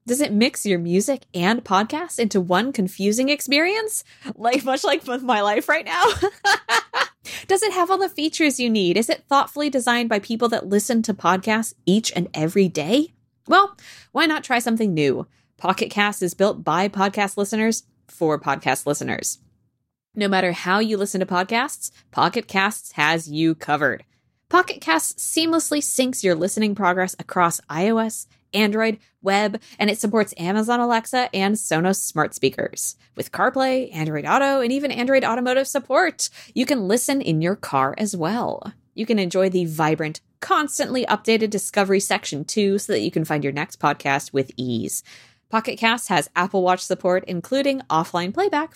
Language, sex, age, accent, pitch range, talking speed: English, female, 20-39, American, 185-270 Hz, 165 wpm